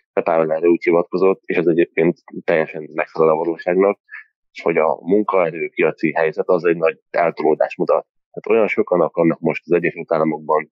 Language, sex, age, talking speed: Hungarian, male, 30-49, 145 wpm